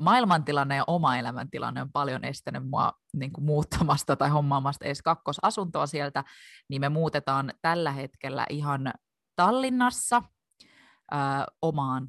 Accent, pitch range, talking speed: native, 135-165 Hz, 110 wpm